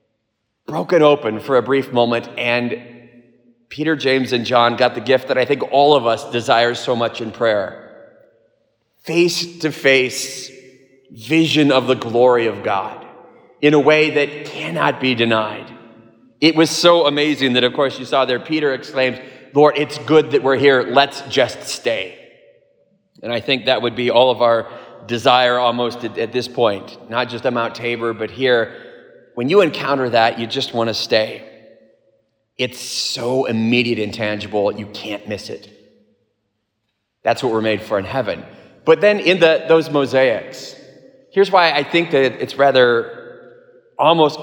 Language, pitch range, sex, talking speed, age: English, 120-160 Hz, male, 165 wpm, 30-49